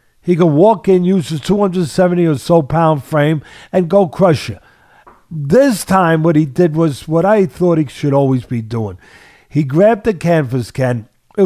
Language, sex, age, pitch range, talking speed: English, male, 50-69, 145-185 Hz, 185 wpm